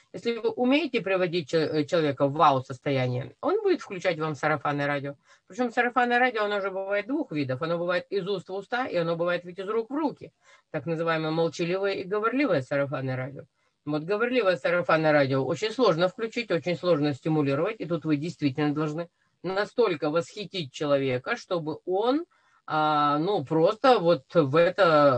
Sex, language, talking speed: female, Russian, 155 wpm